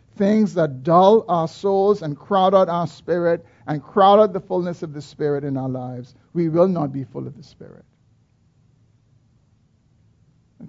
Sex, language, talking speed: male, English, 170 wpm